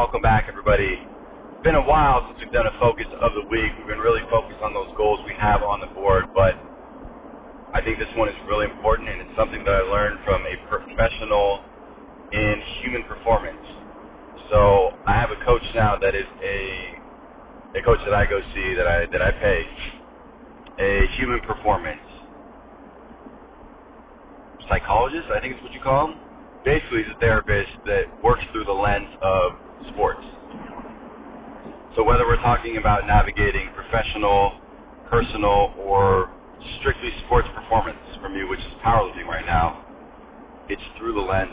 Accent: American